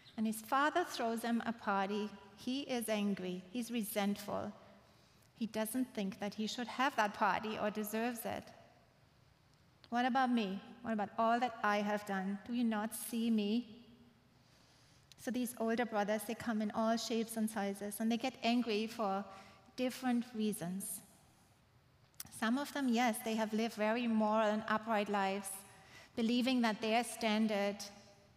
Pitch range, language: 205-235 Hz, English